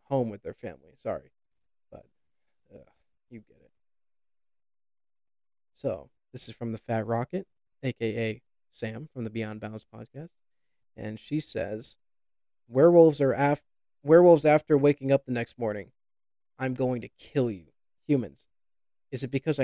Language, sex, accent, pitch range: English, male, American, 115-145 Hz